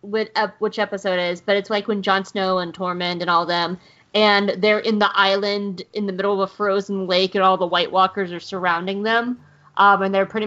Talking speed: 220 wpm